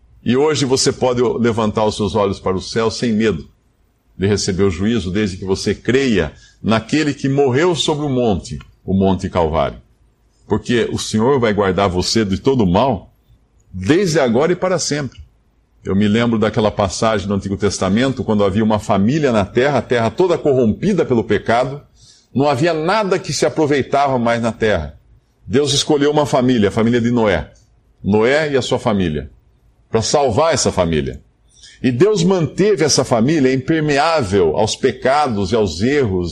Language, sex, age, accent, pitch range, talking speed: Portuguese, male, 50-69, Brazilian, 105-150 Hz, 165 wpm